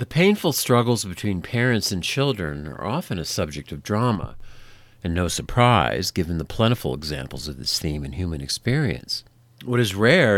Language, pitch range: English, 85-120 Hz